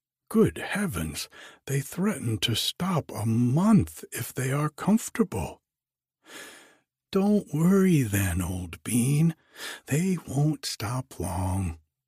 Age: 60-79